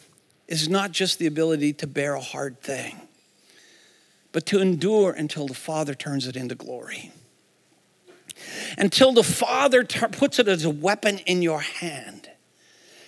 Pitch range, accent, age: 170-240 Hz, American, 50-69